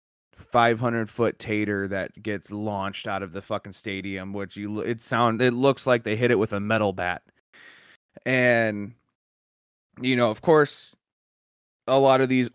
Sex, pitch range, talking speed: male, 110-145 Hz, 165 wpm